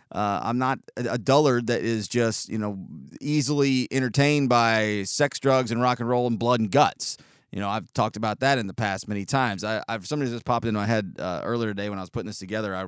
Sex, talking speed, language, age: male, 240 wpm, English, 30-49